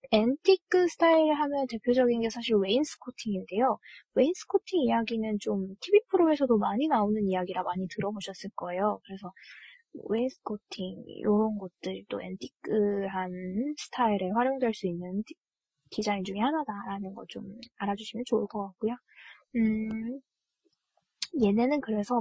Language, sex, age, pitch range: Korean, female, 20-39, 200-265 Hz